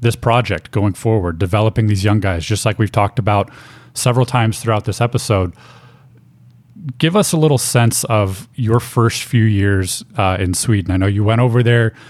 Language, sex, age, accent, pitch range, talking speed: English, male, 30-49, American, 110-125 Hz, 185 wpm